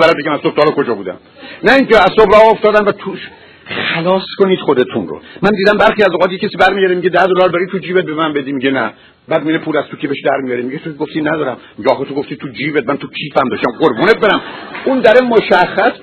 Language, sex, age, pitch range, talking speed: Persian, male, 60-79, 155-205 Hz, 215 wpm